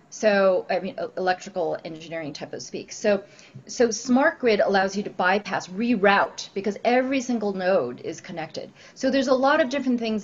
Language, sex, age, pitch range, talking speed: English, female, 30-49, 175-220 Hz, 175 wpm